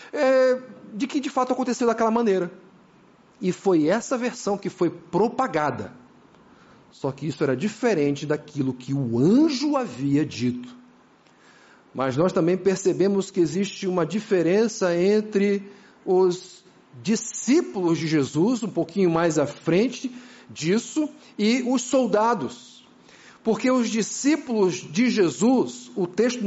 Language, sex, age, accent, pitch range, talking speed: Portuguese, male, 50-69, Brazilian, 195-250 Hz, 120 wpm